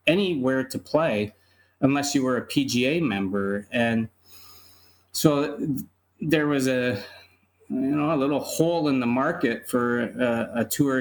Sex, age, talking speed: male, 30-49, 140 wpm